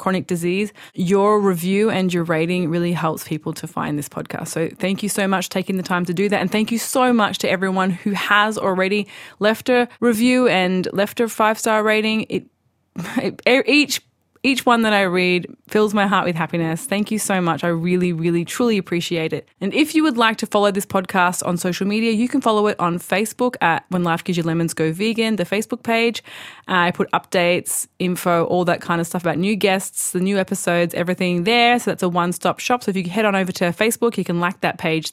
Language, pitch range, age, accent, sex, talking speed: English, 175-225 Hz, 20-39, Australian, female, 225 wpm